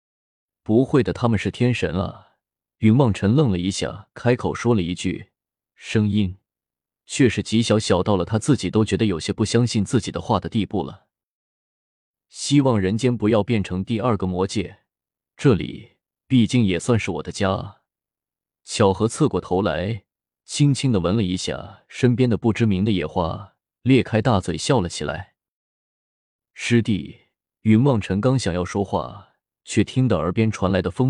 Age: 20-39